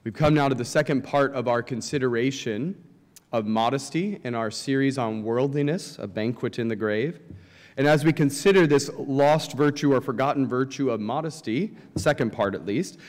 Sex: male